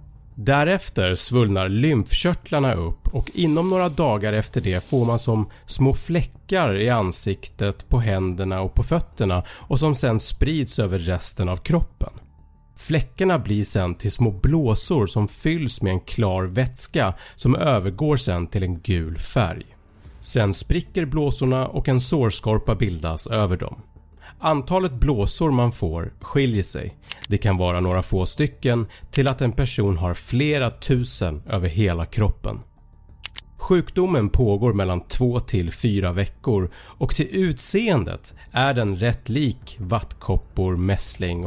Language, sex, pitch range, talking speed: Swedish, male, 95-135 Hz, 140 wpm